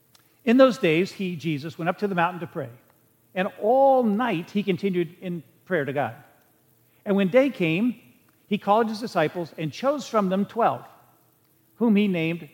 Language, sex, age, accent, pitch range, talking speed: English, male, 50-69, American, 135-185 Hz, 175 wpm